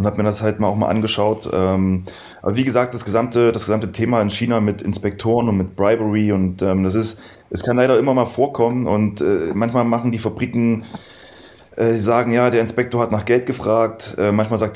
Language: German